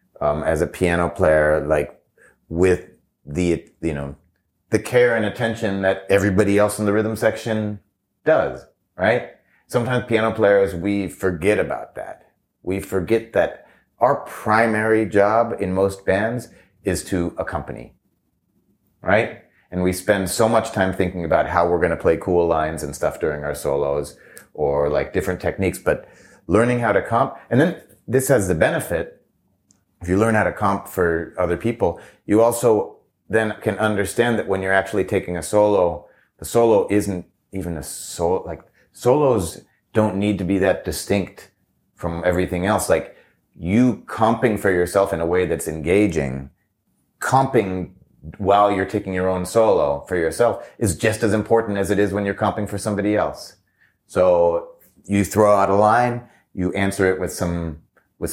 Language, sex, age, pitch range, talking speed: English, male, 30-49, 90-110 Hz, 165 wpm